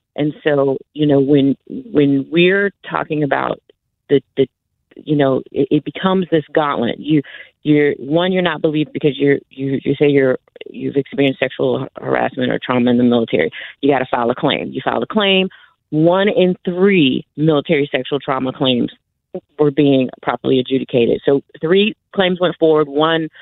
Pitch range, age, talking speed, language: 140-160 Hz, 30-49, 170 wpm, English